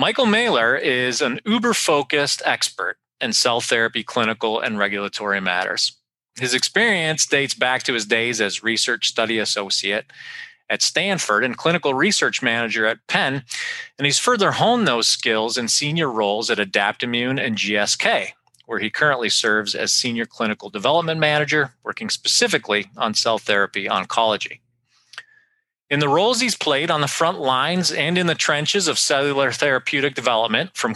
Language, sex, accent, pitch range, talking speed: English, male, American, 115-150 Hz, 150 wpm